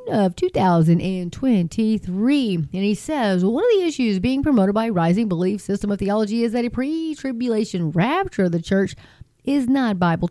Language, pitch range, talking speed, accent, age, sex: English, 190-240 Hz, 185 wpm, American, 40-59, female